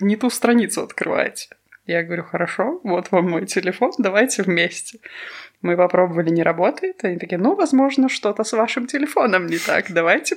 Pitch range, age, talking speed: 175-220 Hz, 20-39, 160 wpm